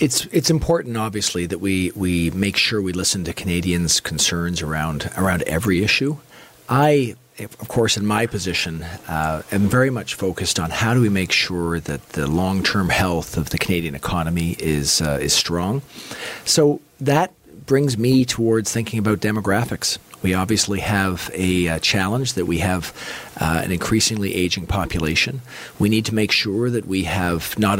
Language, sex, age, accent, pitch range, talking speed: English, male, 40-59, American, 90-115 Hz, 170 wpm